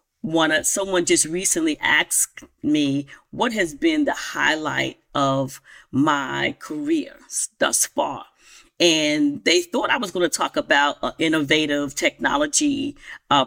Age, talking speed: 40-59, 125 wpm